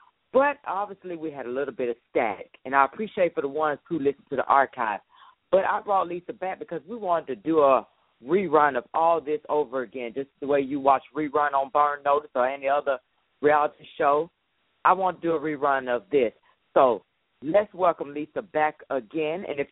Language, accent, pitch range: English, American, 130-180 Hz